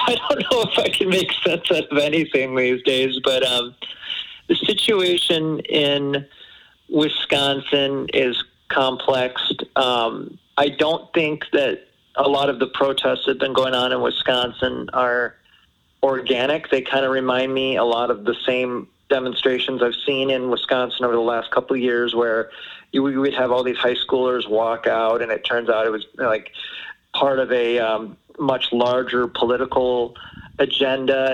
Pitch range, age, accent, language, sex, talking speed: 120-135 Hz, 40-59, American, English, male, 165 wpm